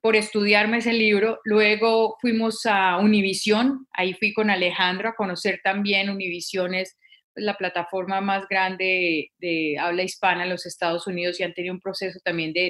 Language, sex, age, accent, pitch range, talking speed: Spanish, female, 30-49, Colombian, 190-235 Hz, 165 wpm